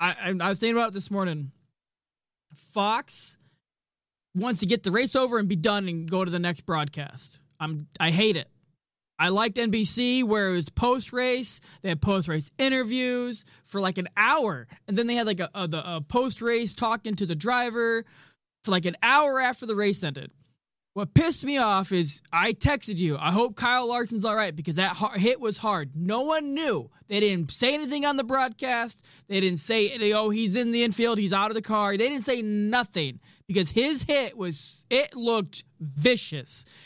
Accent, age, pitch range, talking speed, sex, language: American, 20-39, 175-235 Hz, 195 wpm, male, English